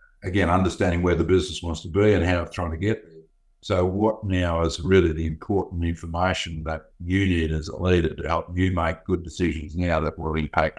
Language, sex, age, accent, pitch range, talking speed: English, male, 60-79, Australian, 80-90 Hz, 215 wpm